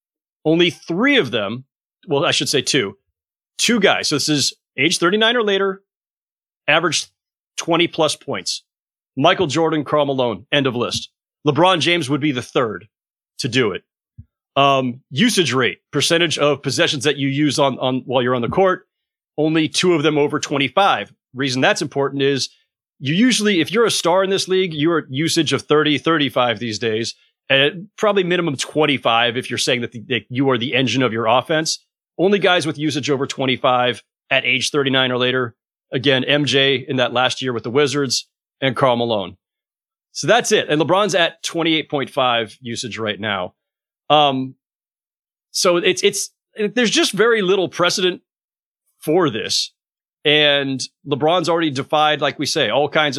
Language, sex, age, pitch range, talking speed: English, male, 30-49, 130-170 Hz, 170 wpm